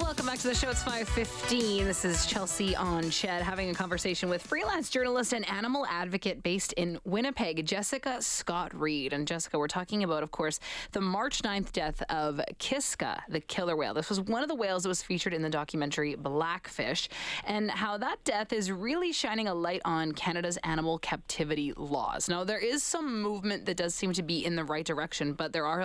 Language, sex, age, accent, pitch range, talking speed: English, female, 20-39, American, 160-210 Hz, 200 wpm